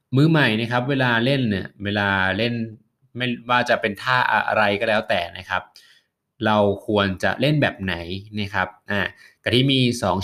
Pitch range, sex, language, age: 100-125 Hz, male, Thai, 20-39